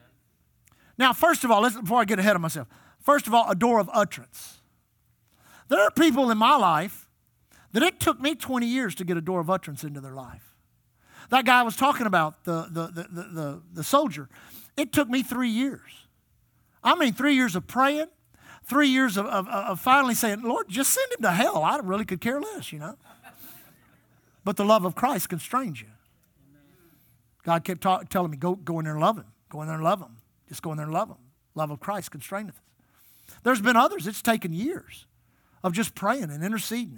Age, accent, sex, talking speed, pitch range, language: 50-69, American, male, 200 wpm, 160-250 Hz, English